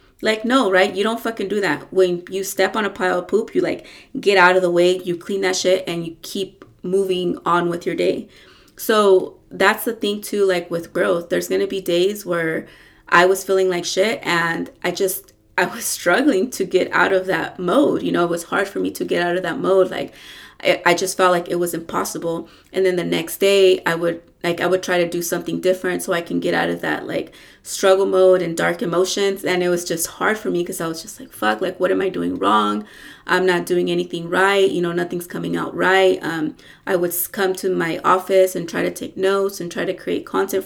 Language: English